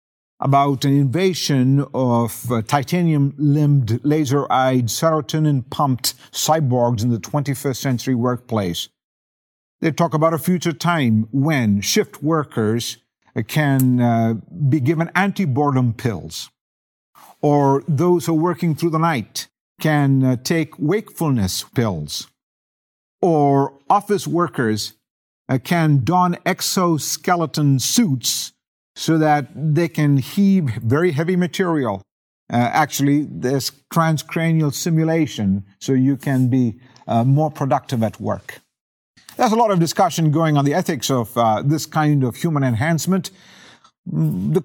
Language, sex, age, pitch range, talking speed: English, male, 50-69, 130-165 Hz, 120 wpm